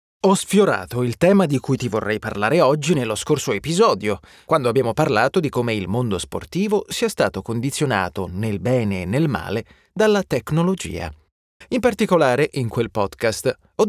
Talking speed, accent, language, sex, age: 160 wpm, native, Italian, male, 30-49